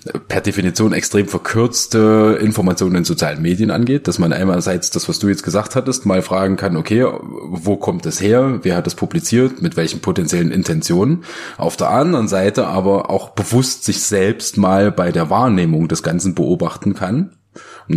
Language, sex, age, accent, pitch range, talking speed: German, male, 30-49, German, 90-120 Hz, 175 wpm